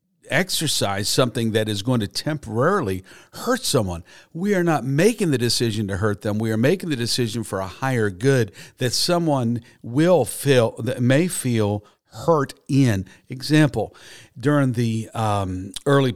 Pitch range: 100-130 Hz